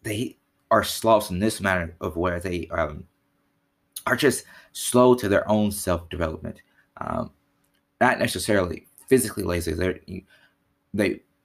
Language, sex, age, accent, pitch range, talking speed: English, male, 20-39, American, 85-100 Hz, 130 wpm